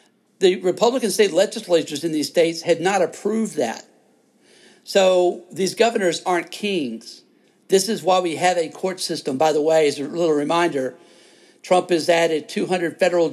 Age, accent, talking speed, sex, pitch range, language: 60-79, American, 165 wpm, male, 160-190 Hz, English